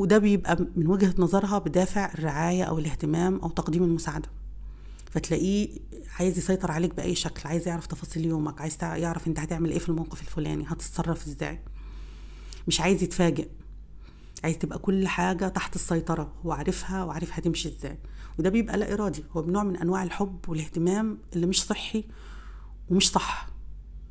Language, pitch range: Arabic, 155-185 Hz